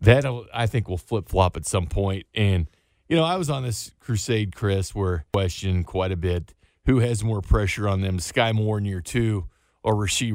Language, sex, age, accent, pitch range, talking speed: English, male, 40-59, American, 95-125 Hz, 215 wpm